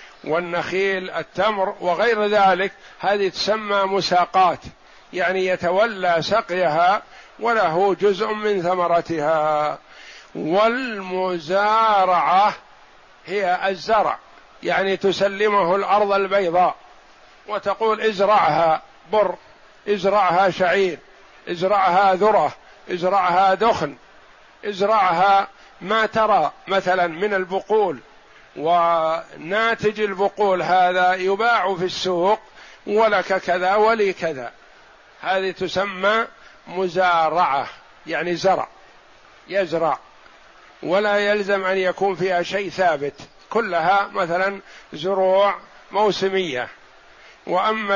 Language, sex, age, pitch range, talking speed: Arabic, male, 50-69, 180-205 Hz, 80 wpm